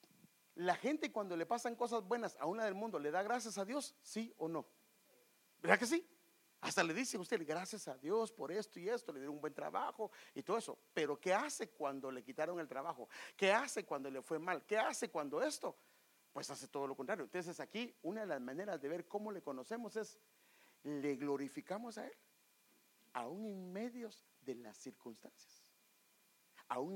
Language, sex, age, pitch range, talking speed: English, male, 50-69, 145-215 Hz, 195 wpm